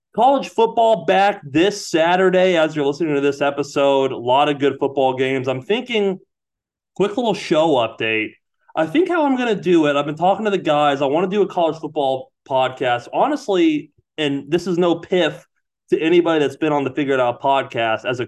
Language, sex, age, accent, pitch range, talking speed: English, male, 30-49, American, 135-180 Hz, 200 wpm